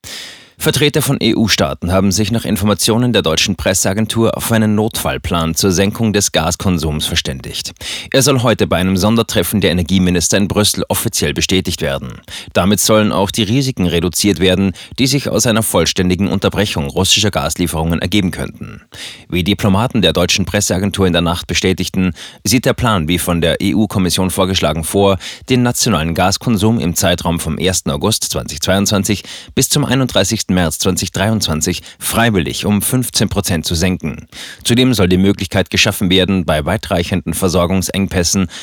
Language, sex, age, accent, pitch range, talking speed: German, male, 30-49, German, 85-105 Hz, 150 wpm